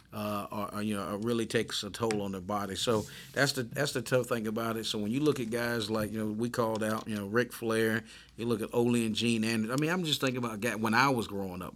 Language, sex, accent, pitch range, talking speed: English, male, American, 105-120 Hz, 290 wpm